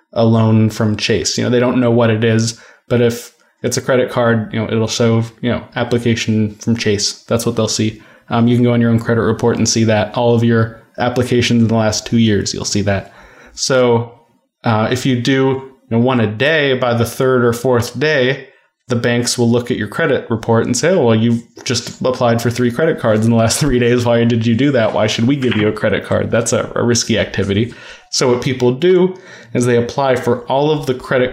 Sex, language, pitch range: male, English, 115-125 Hz